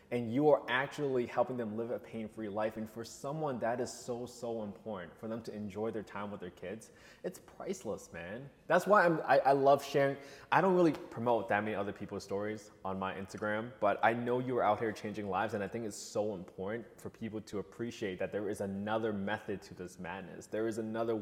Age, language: 20-39, English